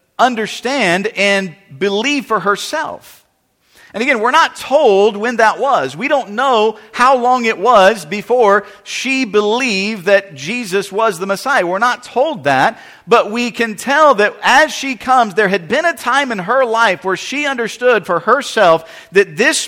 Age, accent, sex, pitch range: 50-69, American, male, 160-250 Hz